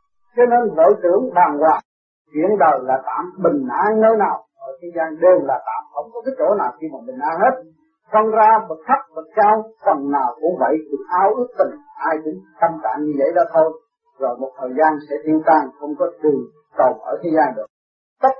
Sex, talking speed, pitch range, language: male, 220 wpm, 170-255 Hz, Vietnamese